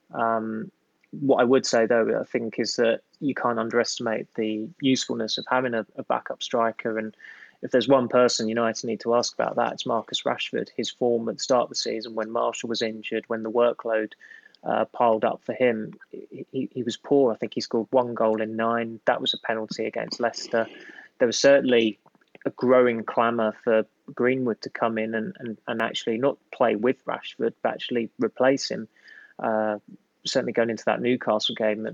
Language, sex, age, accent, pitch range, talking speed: English, male, 20-39, British, 110-125 Hz, 190 wpm